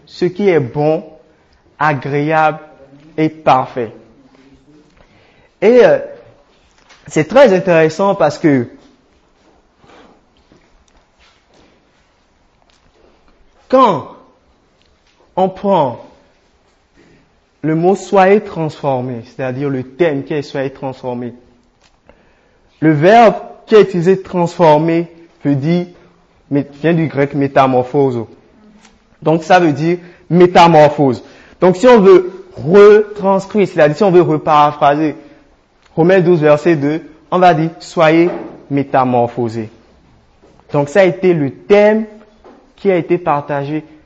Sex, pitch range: male, 140-185 Hz